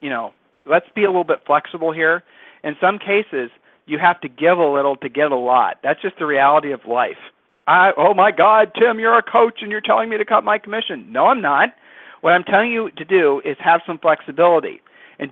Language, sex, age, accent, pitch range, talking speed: English, male, 40-59, American, 155-200 Hz, 225 wpm